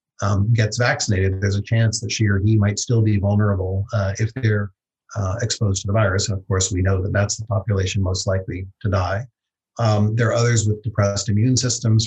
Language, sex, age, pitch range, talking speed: English, male, 30-49, 100-115 Hz, 215 wpm